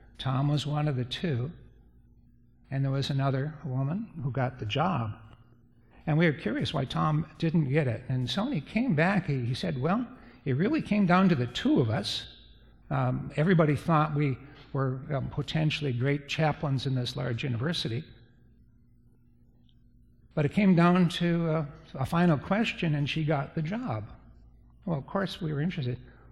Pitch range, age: 125-160 Hz, 60-79